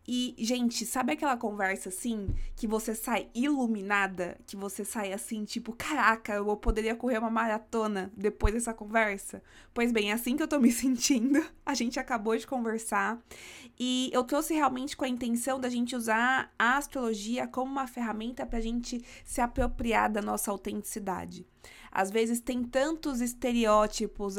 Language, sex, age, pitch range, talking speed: Portuguese, female, 20-39, 205-245 Hz, 160 wpm